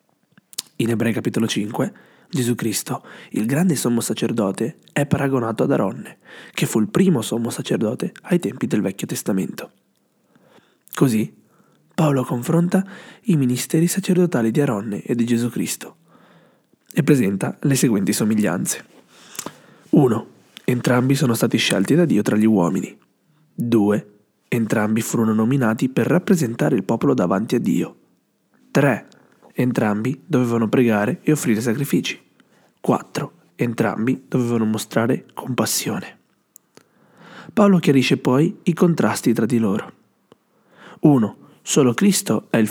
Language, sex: Italian, male